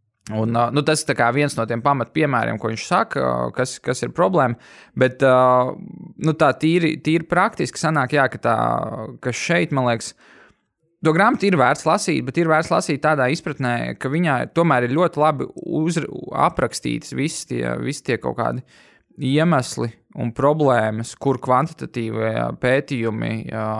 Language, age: English, 20-39